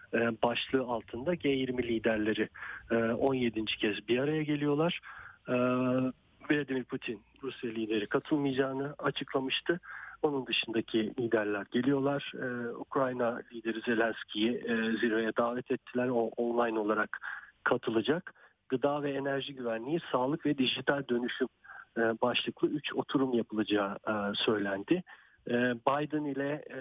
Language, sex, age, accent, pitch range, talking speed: Turkish, male, 50-69, native, 115-140 Hz, 100 wpm